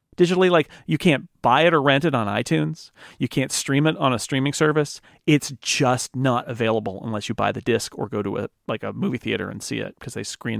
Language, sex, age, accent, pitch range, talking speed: English, male, 40-59, American, 120-145 Hz, 240 wpm